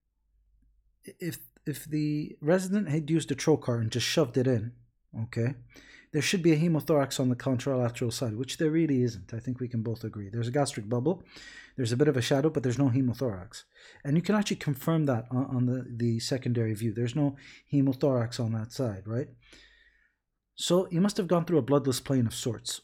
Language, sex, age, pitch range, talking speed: English, male, 30-49, 125-160 Hz, 200 wpm